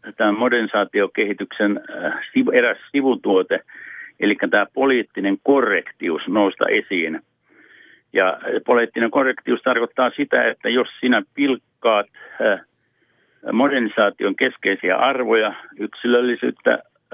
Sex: male